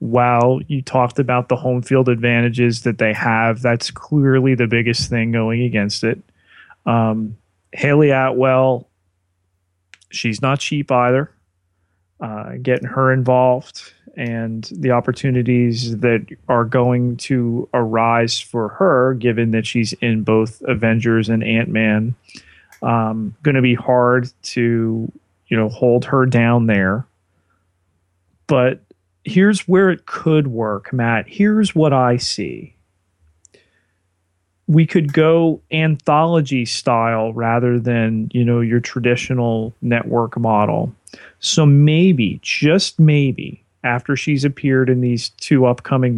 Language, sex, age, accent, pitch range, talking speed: English, male, 30-49, American, 110-130 Hz, 125 wpm